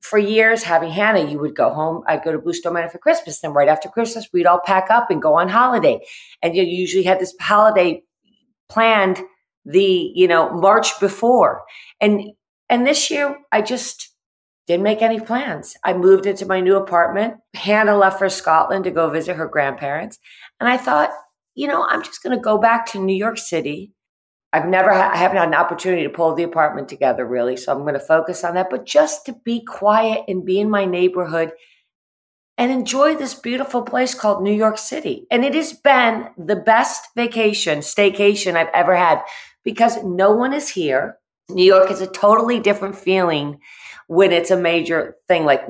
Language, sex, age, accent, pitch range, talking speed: English, female, 40-59, American, 170-230 Hz, 195 wpm